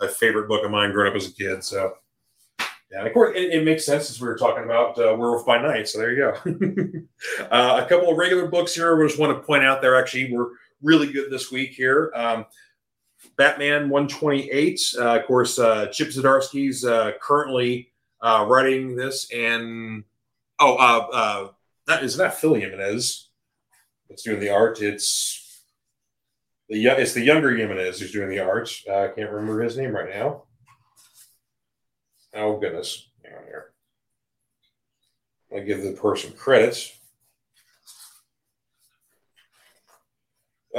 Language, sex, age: English, male, 30-49